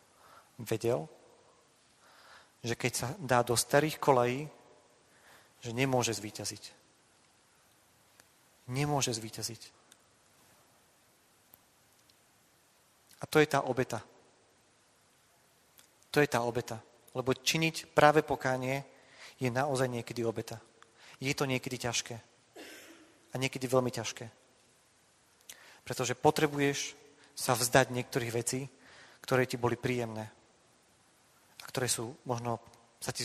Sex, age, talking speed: male, 40-59, 95 wpm